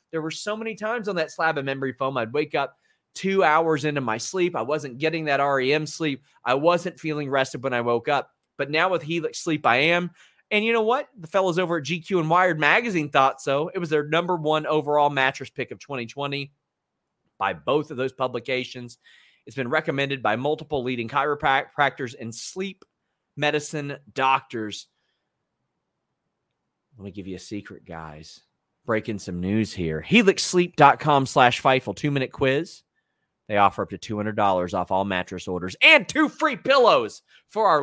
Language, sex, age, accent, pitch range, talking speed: English, male, 30-49, American, 130-175 Hz, 180 wpm